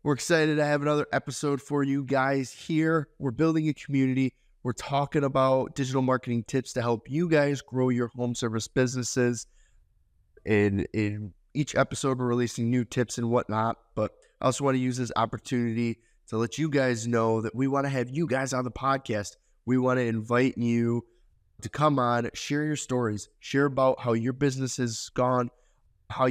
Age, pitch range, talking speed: 20-39, 110-135 Hz, 185 wpm